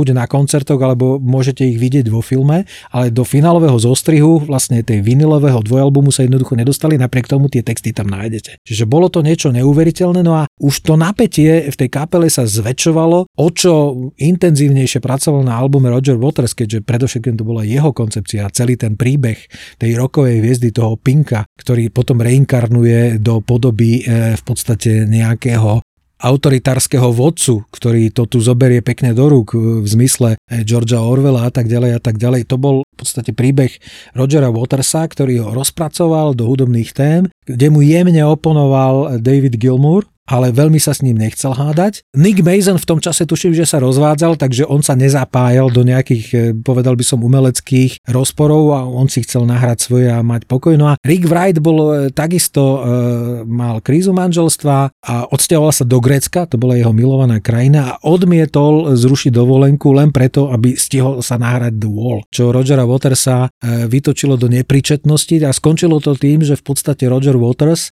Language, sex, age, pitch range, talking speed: Slovak, male, 40-59, 120-150 Hz, 170 wpm